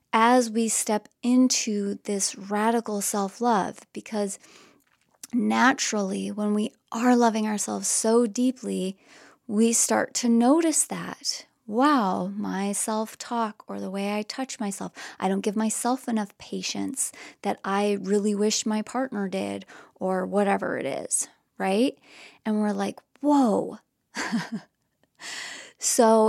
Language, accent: English, American